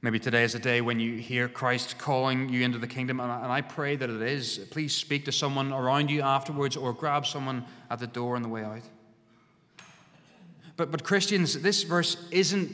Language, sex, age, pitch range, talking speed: English, male, 20-39, 140-185 Hz, 205 wpm